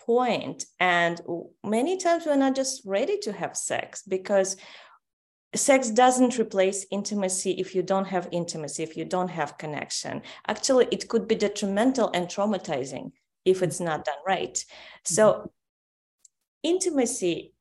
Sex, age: female, 30-49